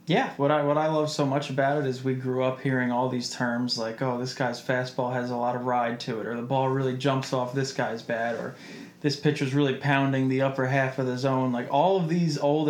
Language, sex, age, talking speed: English, male, 20-39, 260 wpm